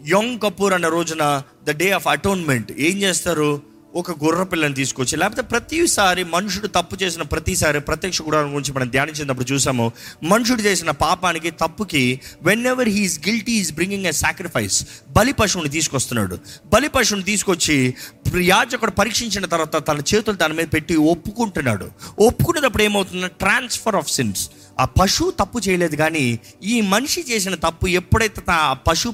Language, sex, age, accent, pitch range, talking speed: Telugu, male, 20-39, native, 140-200 Hz, 140 wpm